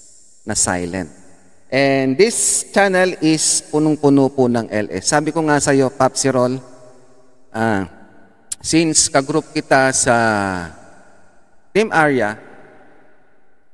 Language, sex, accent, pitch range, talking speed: Filipino, male, native, 115-155 Hz, 105 wpm